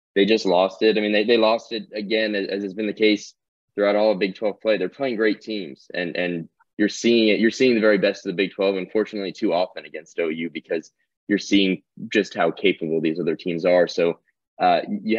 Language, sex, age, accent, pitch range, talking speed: English, male, 20-39, American, 95-105 Hz, 230 wpm